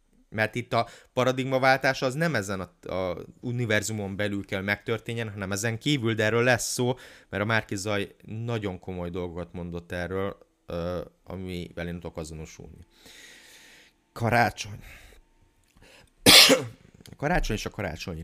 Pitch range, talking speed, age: 90-120 Hz, 125 wpm, 30-49